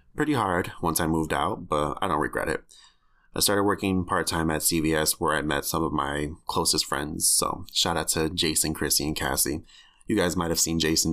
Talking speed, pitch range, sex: 210 wpm, 75-90 Hz, male